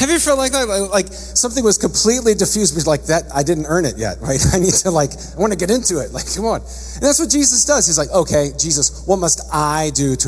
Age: 40-59